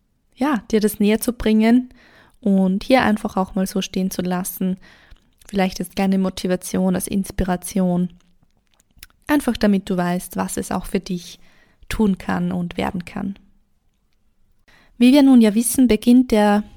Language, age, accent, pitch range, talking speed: German, 20-39, German, 190-225 Hz, 150 wpm